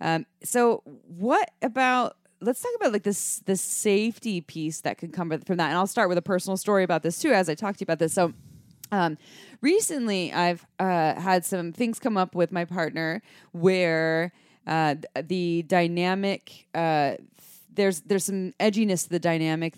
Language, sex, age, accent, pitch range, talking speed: English, female, 20-39, American, 160-195 Hz, 180 wpm